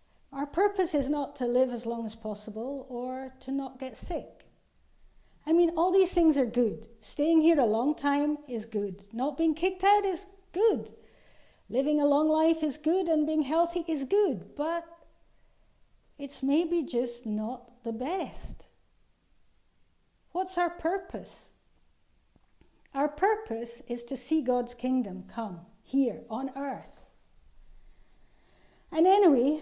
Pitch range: 225-310 Hz